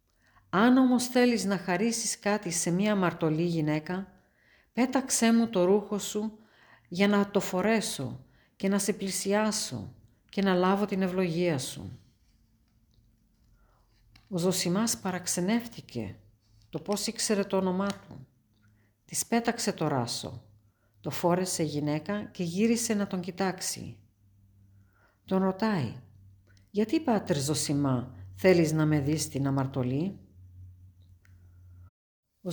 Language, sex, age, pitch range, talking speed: Greek, female, 50-69, 145-200 Hz, 115 wpm